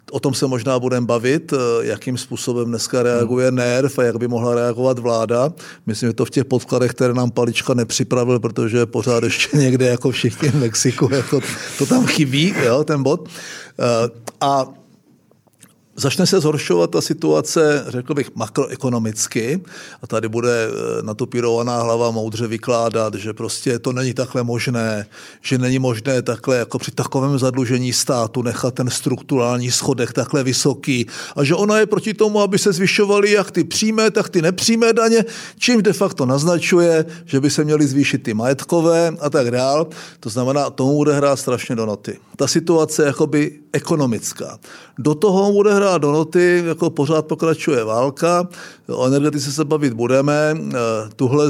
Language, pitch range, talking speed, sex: Czech, 125-160 Hz, 160 wpm, male